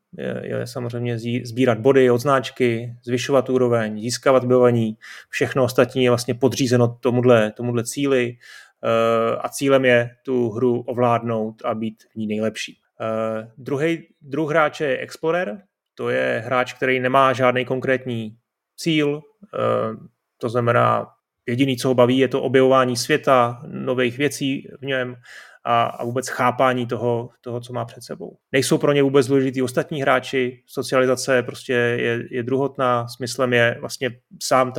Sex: male